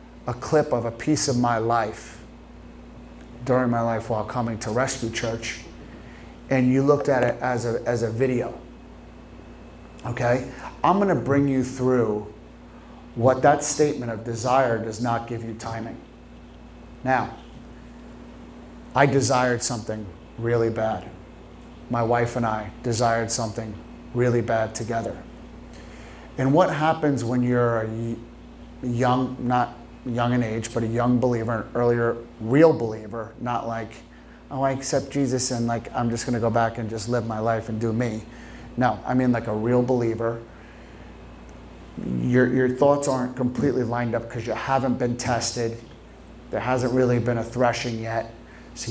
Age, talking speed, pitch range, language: 30-49, 155 wpm, 115-125 Hz, English